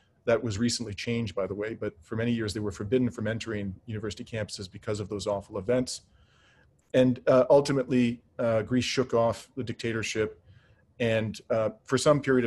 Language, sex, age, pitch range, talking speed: English, male, 40-59, 105-120 Hz, 180 wpm